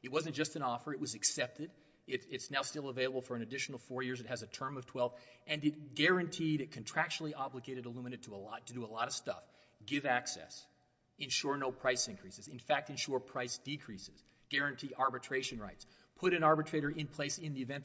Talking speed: 195 wpm